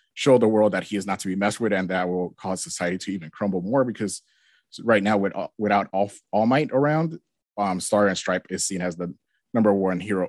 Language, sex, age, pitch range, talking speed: English, male, 30-49, 100-125 Hz, 235 wpm